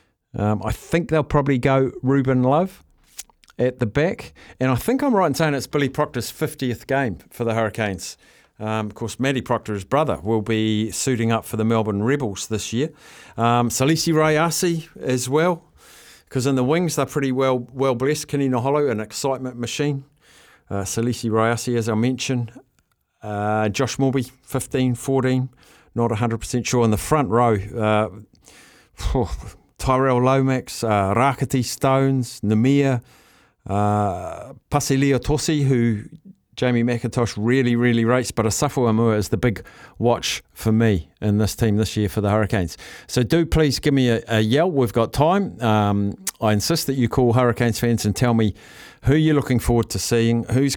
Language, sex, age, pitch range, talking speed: English, male, 50-69, 110-135 Hz, 165 wpm